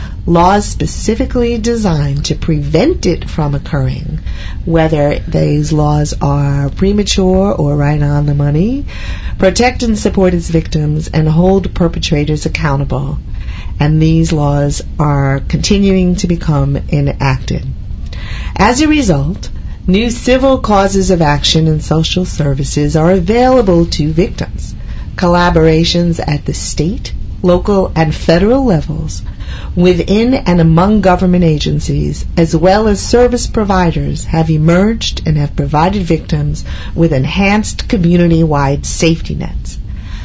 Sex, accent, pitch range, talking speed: female, American, 145-180 Hz, 120 wpm